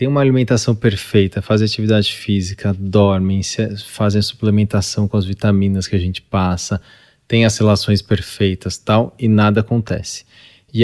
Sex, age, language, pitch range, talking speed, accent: male, 20-39, Portuguese, 100-115 Hz, 155 wpm, Brazilian